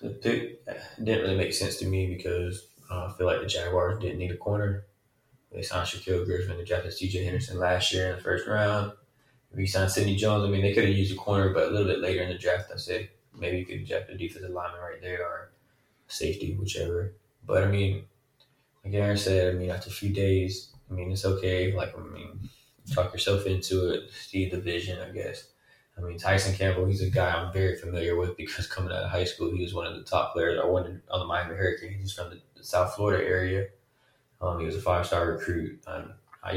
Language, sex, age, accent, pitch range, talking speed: English, male, 20-39, American, 90-105 Hz, 230 wpm